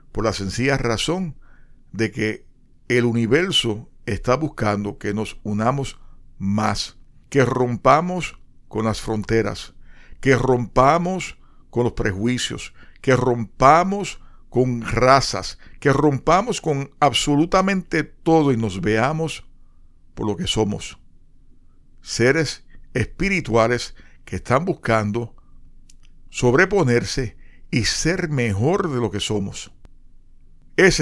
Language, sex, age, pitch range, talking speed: Spanish, male, 50-69, 105-135 Hz, 105 wpm